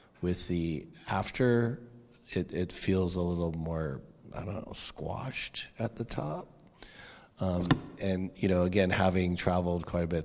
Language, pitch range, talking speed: English, 85-95 Hz, 150 wpm